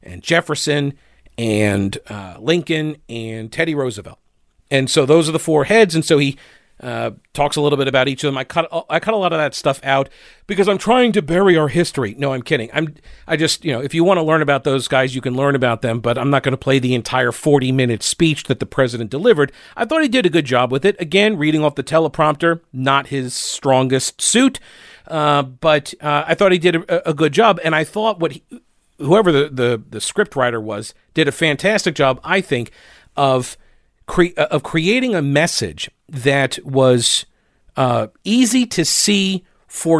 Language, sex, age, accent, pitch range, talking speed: English, male, 40-59, American, 135-175 Hz, 205 wpm